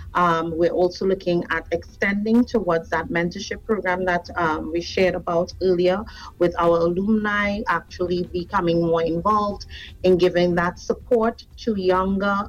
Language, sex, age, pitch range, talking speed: English, female, 40-59, 170-195 Hz, 140 wpm